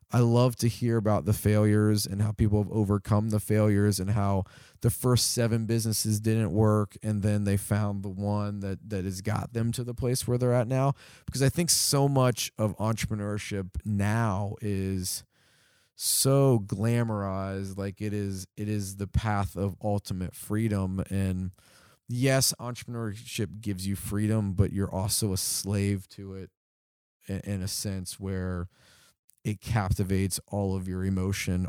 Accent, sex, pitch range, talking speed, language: American, male, 95-115 Hz, 160 wpm, English